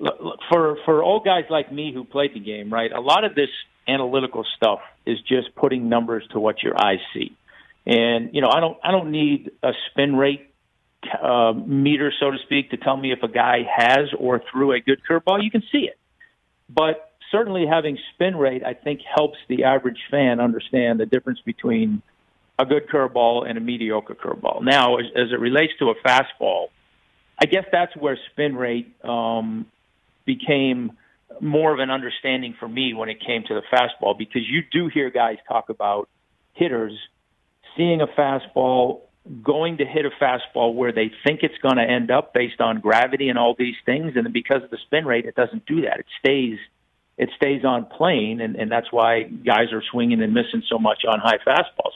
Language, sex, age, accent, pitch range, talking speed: English, male, 50-69, American, 120-150 Hz, 200 wpm